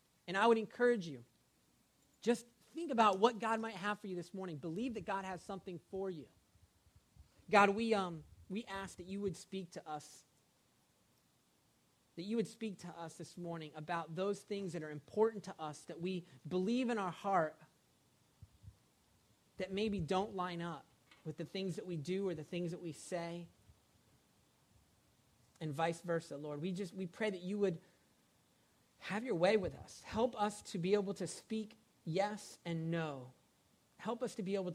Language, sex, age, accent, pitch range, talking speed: English, male, 40-59, American, 165-210 Hz, 180 wpm